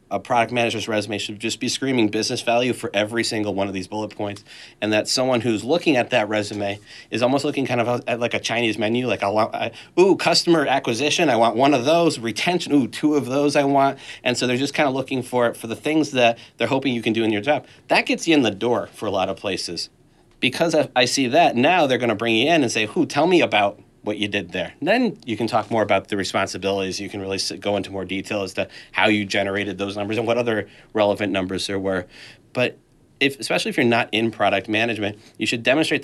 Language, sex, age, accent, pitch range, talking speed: English, male, 30-49, American, 105-125 Hz, 250 wpm